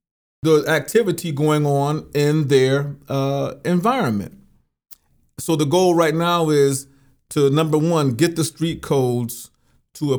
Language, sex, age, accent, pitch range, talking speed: English, male, 40-59, American, 125-160 Hz, 135 wpm